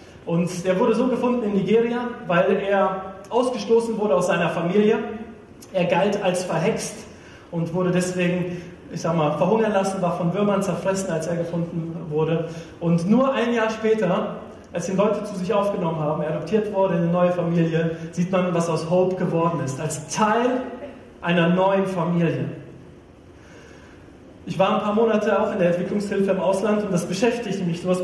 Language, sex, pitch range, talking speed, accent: German, male, 175-220 Hz, 175 wpm, German